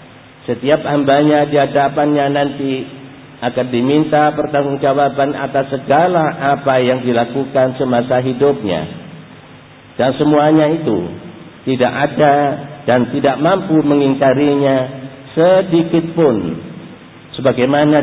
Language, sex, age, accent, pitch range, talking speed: English, male, 50-69, Indonesian, 125-150 Hz, 85 wpm